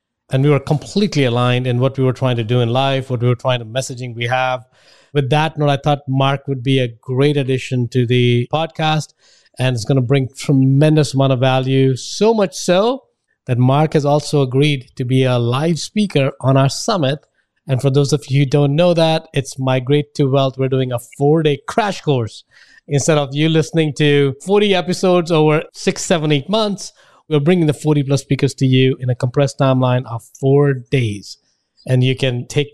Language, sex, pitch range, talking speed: English, male, 130-150 Hz, 200 wpm